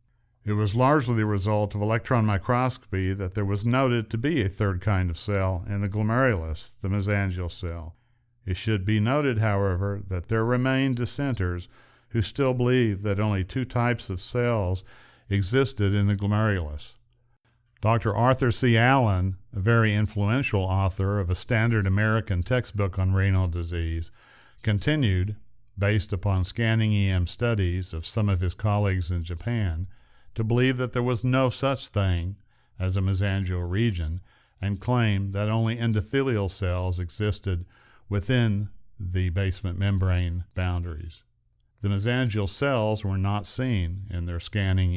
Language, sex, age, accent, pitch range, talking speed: English, male, 50-69, American, 95-115 Hz, 145 wpm